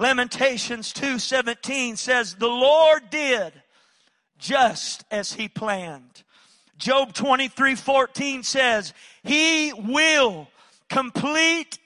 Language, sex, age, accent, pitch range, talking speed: English, male, 40-59, American, 245-315 Hz, 80 wpm